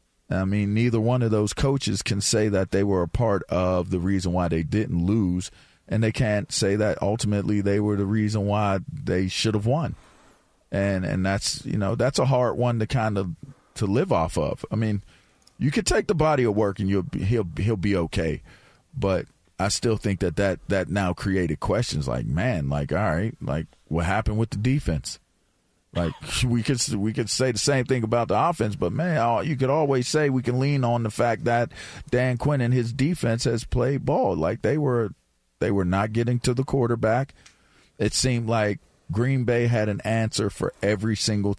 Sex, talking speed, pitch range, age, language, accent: male, 205 wpm, 95-120 Hz, 40-59, English, American